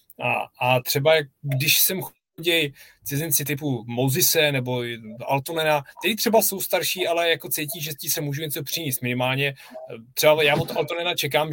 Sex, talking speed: male, 155 wpm